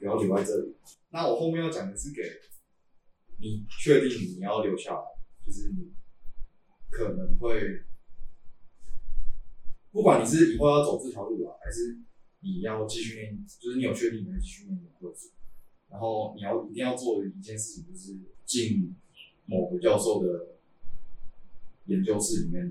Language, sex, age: Chinese, male, 20-39